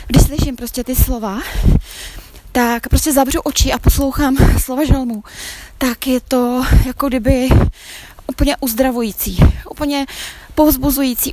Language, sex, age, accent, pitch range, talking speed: Czech, female, 20-39, native, 230-270 Hz, 115 wpm